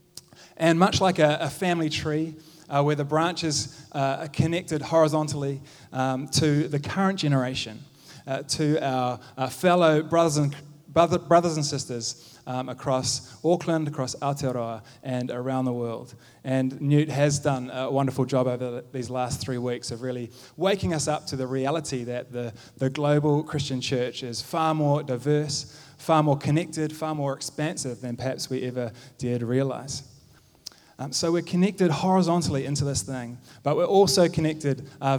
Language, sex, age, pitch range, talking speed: English, male, 20-39, 130-160 Hz, 165 wpm